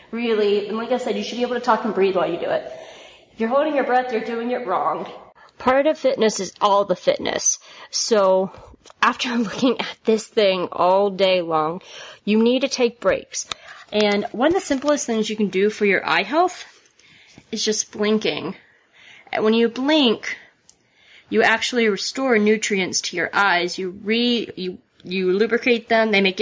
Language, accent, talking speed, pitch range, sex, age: English, American, 190 wpm, 200-240 Hz, female, 30-49